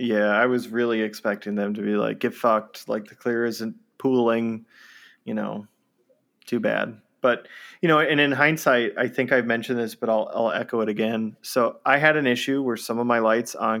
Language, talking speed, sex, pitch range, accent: English, 210 wpm, male, 105-120 Hz, American